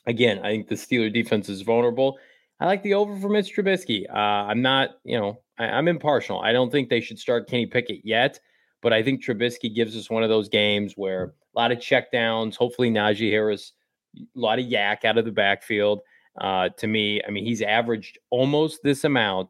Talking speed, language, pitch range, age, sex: 210 wpm, English, 105-135 Hz, 20-39, male